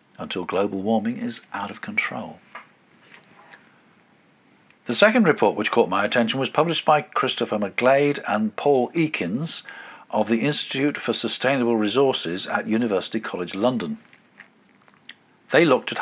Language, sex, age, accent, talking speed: English, male, 50-69, British, 130 wpm